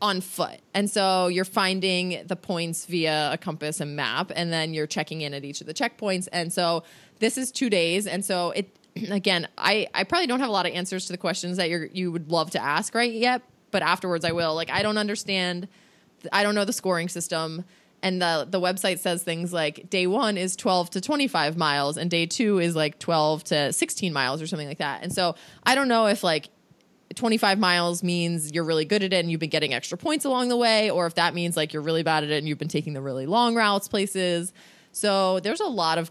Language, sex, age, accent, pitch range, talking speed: English, female, 20-39, American, 165-210 Hz, 240 wpm